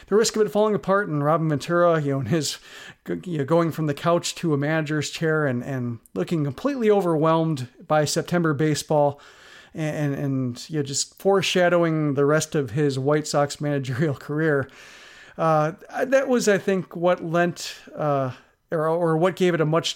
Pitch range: 150-180 Hz